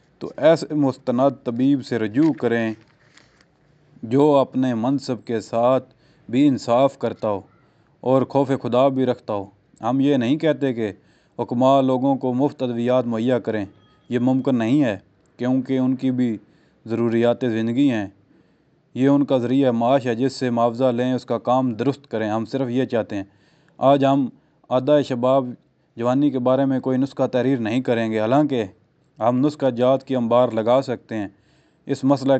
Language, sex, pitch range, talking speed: Urdu, male, 120-135 Hz, 165 wpm